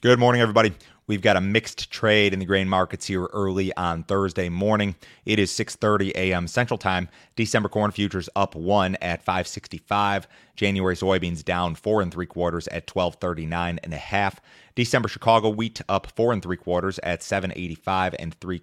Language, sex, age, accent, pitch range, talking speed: English, male, 30-49, American, 90-105 Hz, 175 wpm